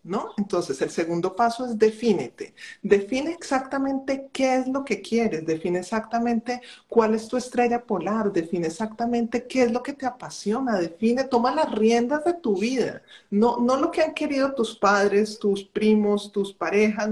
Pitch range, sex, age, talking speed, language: 195-245 Hz, male, 40-59, 165 wpm, Spanish